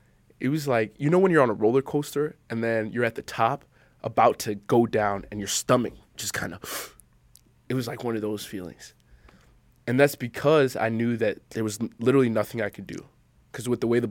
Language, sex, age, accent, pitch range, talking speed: English, male, 20-39, American, 110-125 Hz, 220 wpm